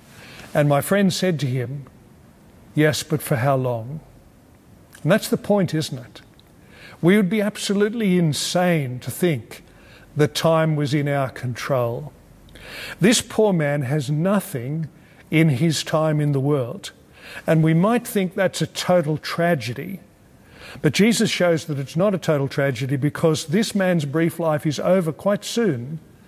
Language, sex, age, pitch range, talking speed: English, male, 50-69, 145-180 Hz, 155 wpm